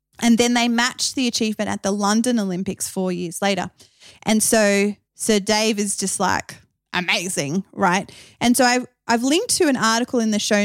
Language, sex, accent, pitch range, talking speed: English, female, Australian, 190-240 Hz, 185 wpm